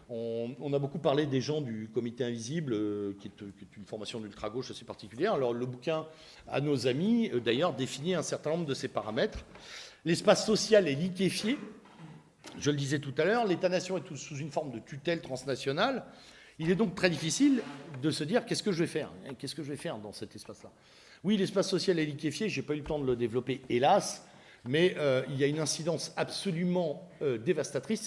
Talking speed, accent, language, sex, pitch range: 205 wpm, French, French, male, 120-170 Hz